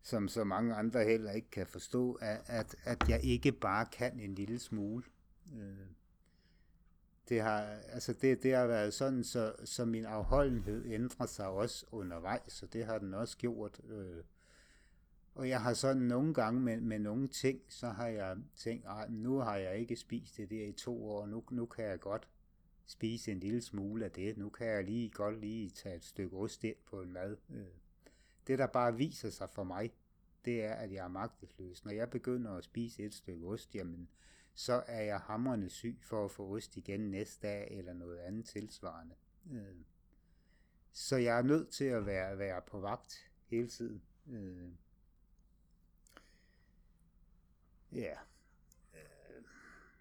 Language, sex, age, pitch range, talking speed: Danish, male, 60-79, 95-120 Hz, 165 wpm